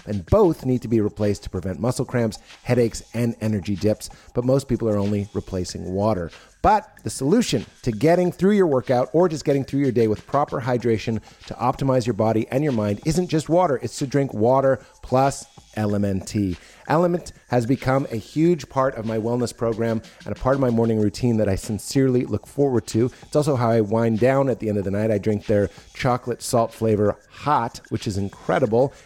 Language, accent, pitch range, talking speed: English, American, 110-135 Hz, 205 wpm